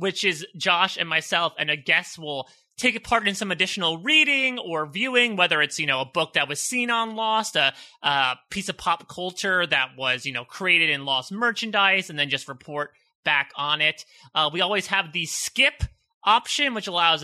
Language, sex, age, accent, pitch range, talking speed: English, male, 30-49, American, 150-240 Hz, 205 wpm